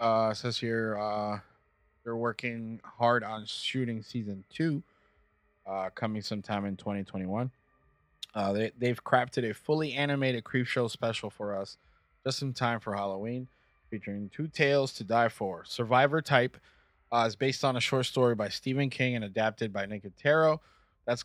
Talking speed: 160 wpm